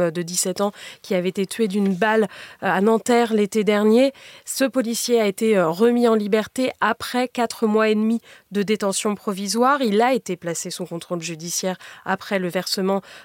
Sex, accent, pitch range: female, French, 195-235 Hz